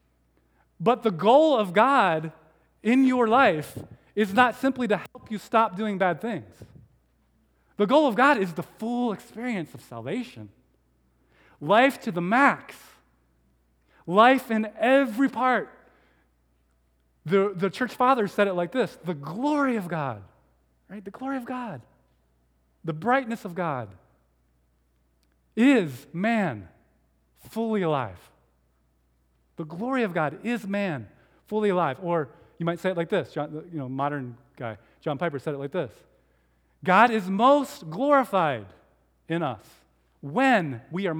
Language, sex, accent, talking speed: English, male, American, 140 wpm